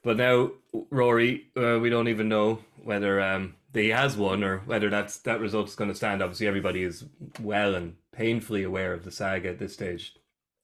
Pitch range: 95-110 Hz